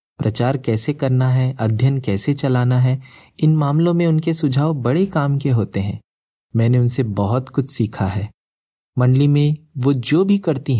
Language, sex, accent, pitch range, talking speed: Hindi, male, native, 110-140 Hz, 165 wpm